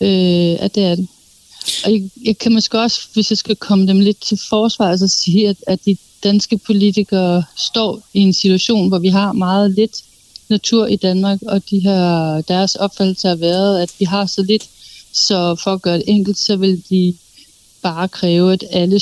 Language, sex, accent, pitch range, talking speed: Danish, female, native, 180-205 Hz, 200 wpm